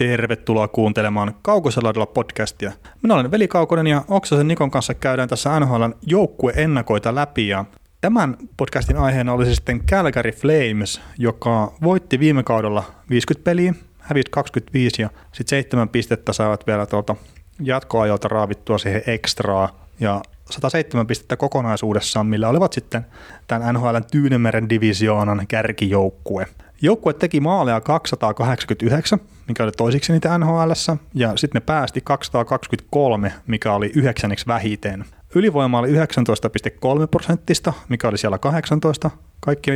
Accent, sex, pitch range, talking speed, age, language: native, male, 110-145 Hz, 125 wpm, 30-49, Finnish